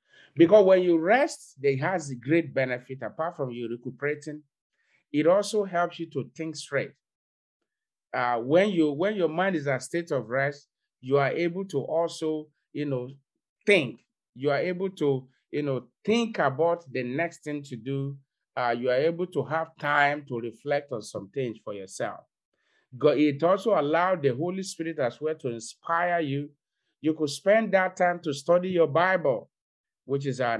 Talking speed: 175 wpm